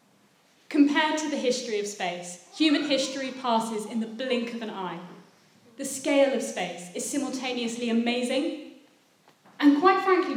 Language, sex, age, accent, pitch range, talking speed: English, female, 30-49, British, 190-270 Hz, 145 wpm